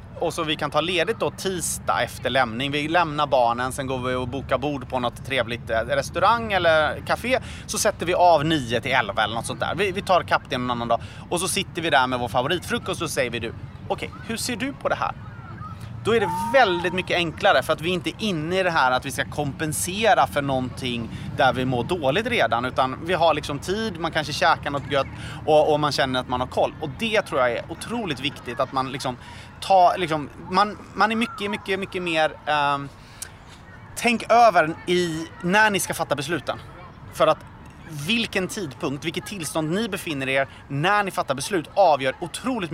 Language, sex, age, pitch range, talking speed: Swedish, male, 30-49, 130-185 Hz, 210 wpm